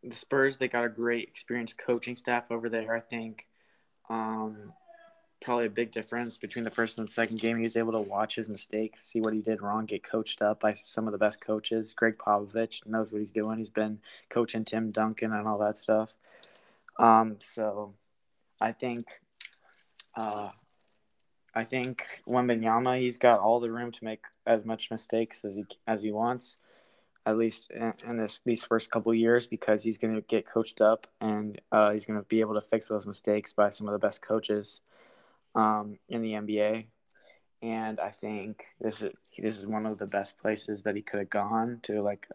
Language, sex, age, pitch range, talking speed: English, male, 20-39, 105-115 Hz, 200 wpm